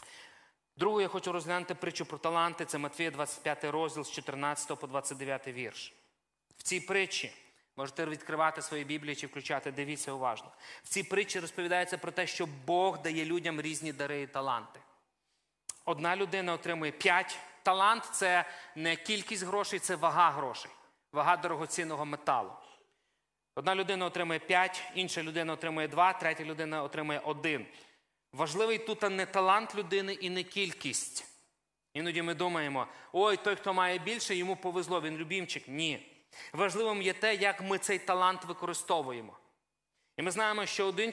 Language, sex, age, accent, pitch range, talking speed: Ukrainian, male, 30-49, native, 160-210 Hz, 150 wpm